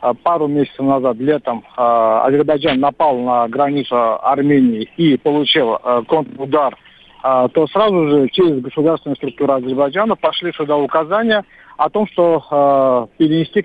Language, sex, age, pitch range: Russian, male, 40-59, 135-165 Hz